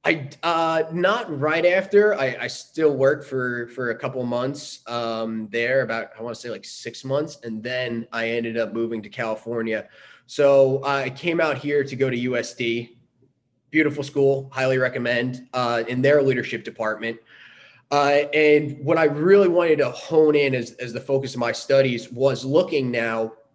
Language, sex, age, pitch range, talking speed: English, male, 20-39, 120-140 Hz, 180 wpm